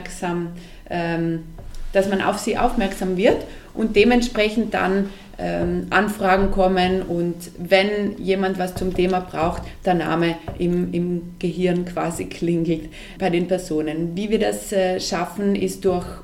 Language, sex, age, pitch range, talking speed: German, female, 30-49, 175-195 Hz, 125 wpm